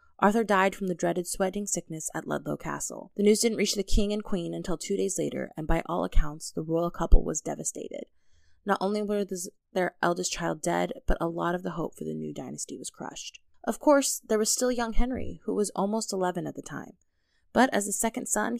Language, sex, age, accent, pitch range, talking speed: English, female, 20-39, American, 175-215 Hz, 225 wpm